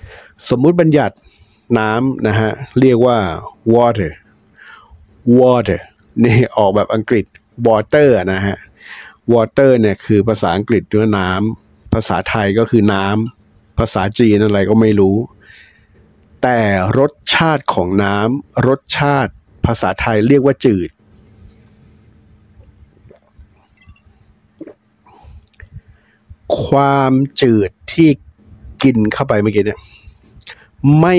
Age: 60-79